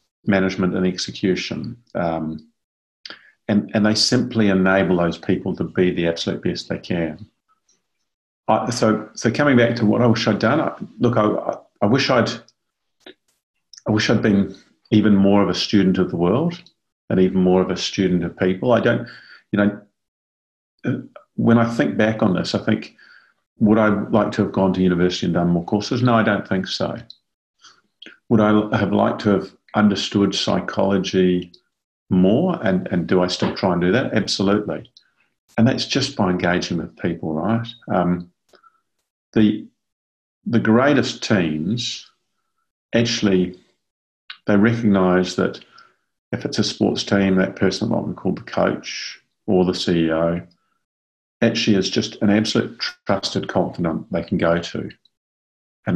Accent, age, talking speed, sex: British, 50-69, 160 wpm, male